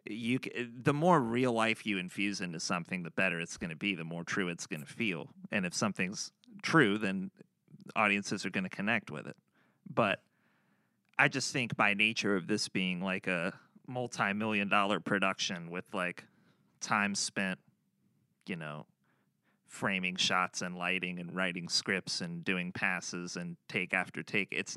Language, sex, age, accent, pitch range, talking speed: English, male, 30-49, American, 90-115 Hz, 170 wpm